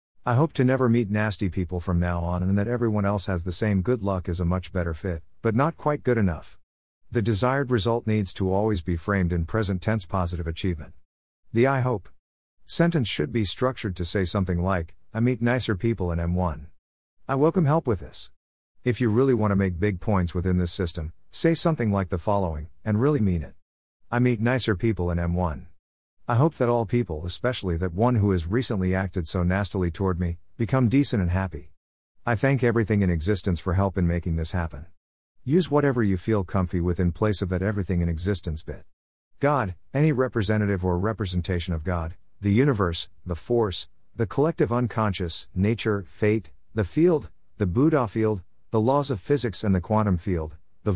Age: 50-69